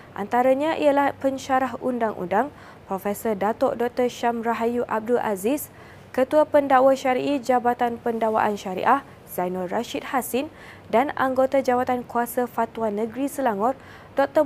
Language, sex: Malay, female